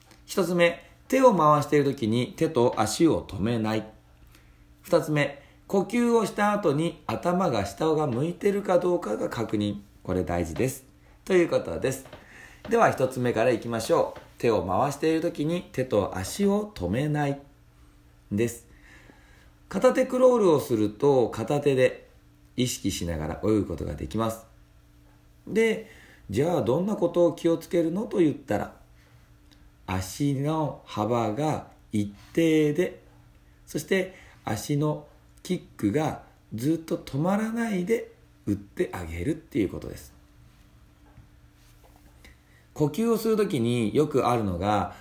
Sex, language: male, Japanese